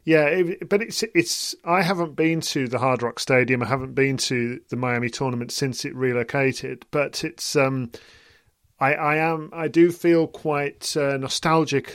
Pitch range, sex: 130-150 Hz, male